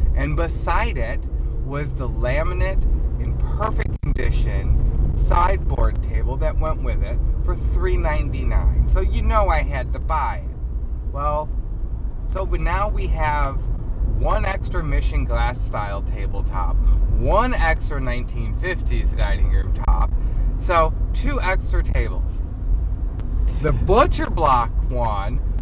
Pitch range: 65-110 Hz